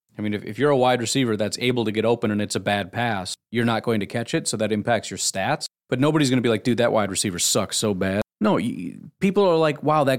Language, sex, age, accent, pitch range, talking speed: English, male, 30-49, American, 105-135 Hz, 285 wpm